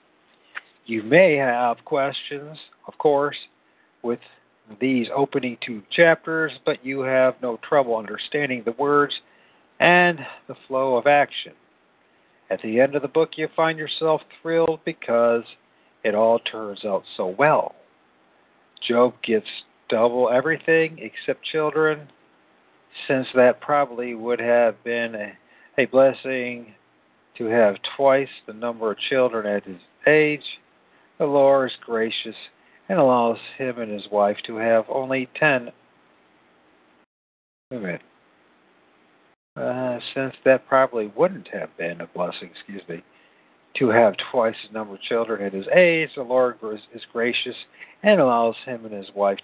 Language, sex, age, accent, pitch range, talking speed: English, male, 50-69, American, 115-145 Hz, 135 wpm